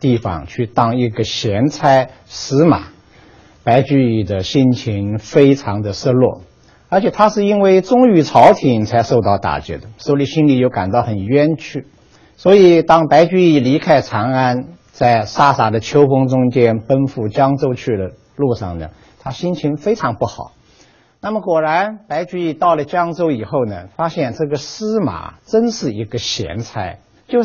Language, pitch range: Chinese, 115-160 Hz